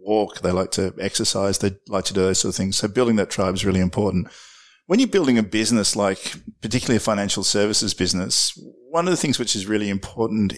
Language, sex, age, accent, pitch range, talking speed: English, male, 50-69, Australian, 95-110 Hz, 220 wpm